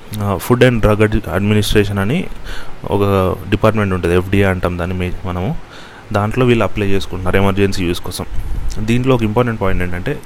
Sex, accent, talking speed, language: male, native, 140 wpm, Telugu